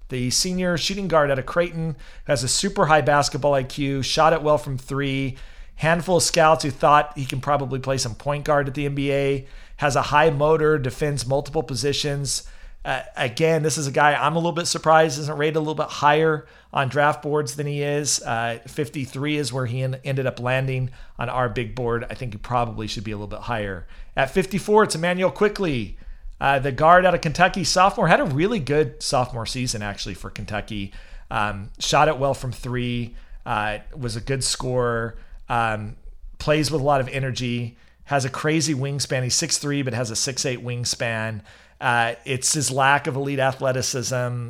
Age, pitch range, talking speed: 40-59, 120-150 Hz, 190 wpm